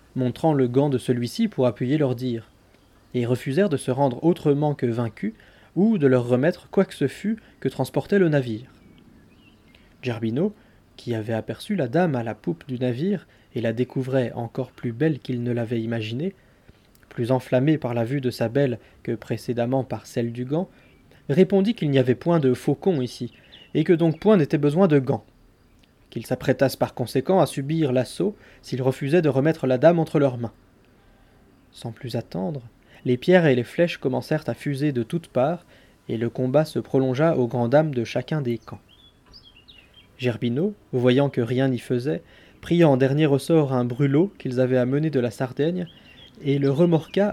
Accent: French